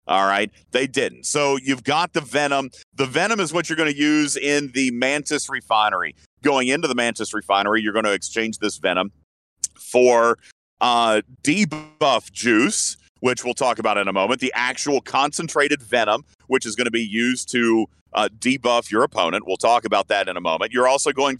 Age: 40-59